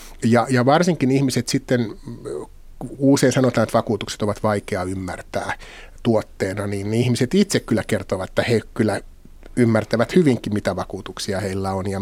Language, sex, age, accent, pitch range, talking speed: Finnish, male, 30-49, native, 100-120 Hz, 145 wpm